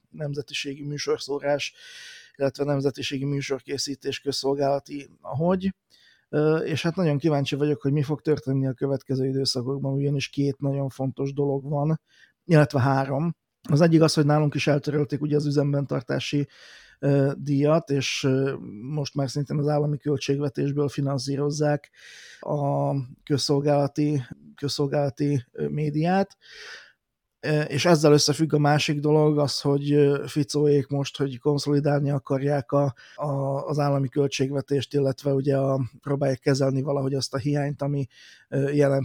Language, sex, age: Hungarian, male, 30-49